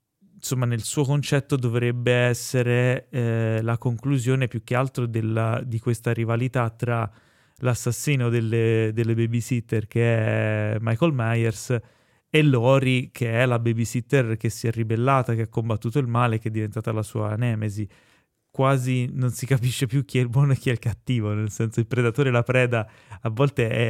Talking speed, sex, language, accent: 175 wpm, male, Italian, native